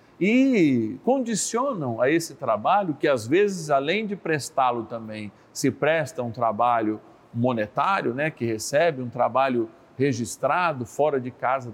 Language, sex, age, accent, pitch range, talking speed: Portuguese, male, 50-69, Brazilian, 120-155 Hz, 135 wpm